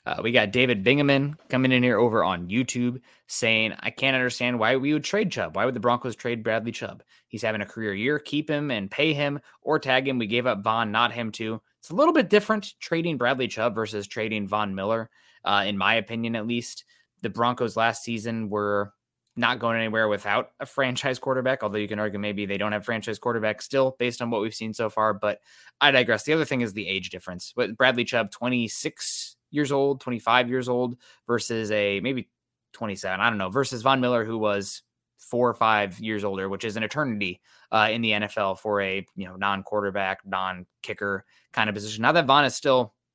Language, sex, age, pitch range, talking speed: English, male, 20-39, 105-130 Hz, 215 wpm